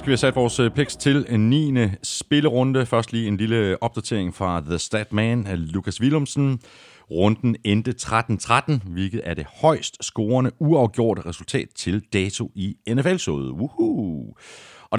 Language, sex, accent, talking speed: Danish, male, native, 150 wpm